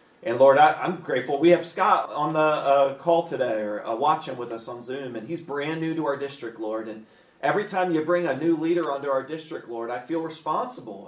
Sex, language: male, English